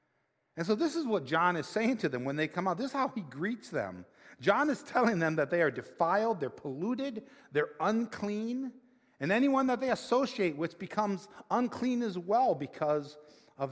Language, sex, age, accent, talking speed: English, male, 50-69, American, 190 wpm